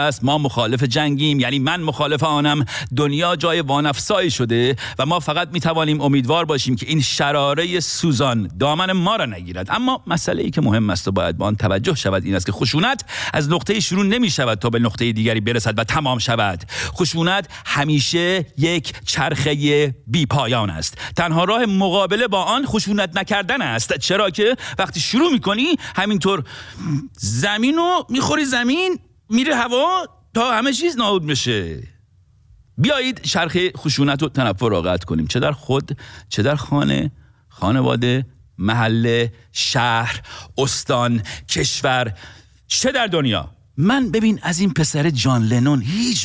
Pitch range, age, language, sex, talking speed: 110-170 Hz, 50-69, Persian, male, 150 wpm